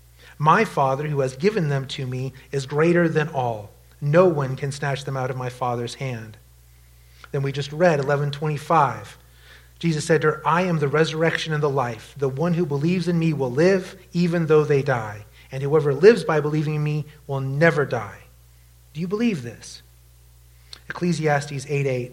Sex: male